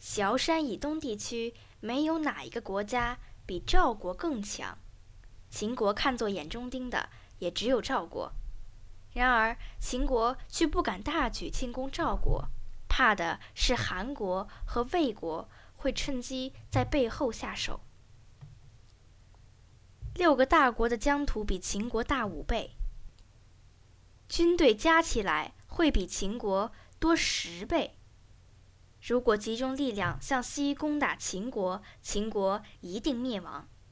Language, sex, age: Chinese, female, 10-29